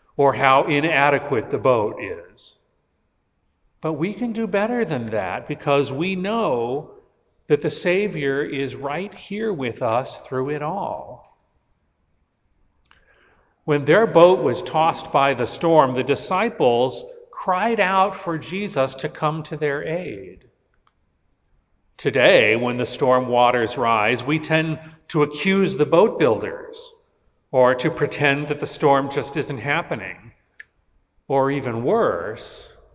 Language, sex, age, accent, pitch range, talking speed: English, male, 40-59, American, 125-175 Hz, 125 wpm